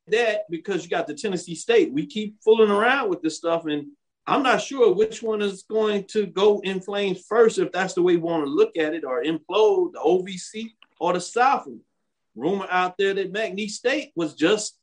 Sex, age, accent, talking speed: male, 40-59, American, 210 wpm